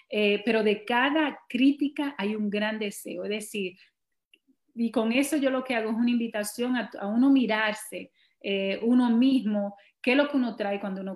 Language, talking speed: Spanish, 195 wpm